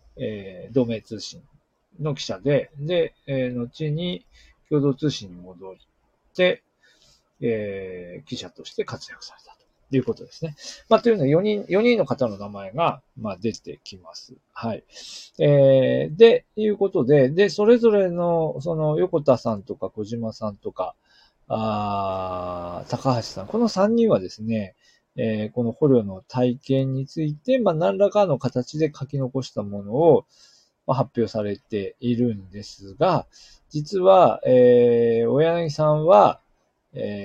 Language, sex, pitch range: Japanese, male, 110-170 Hz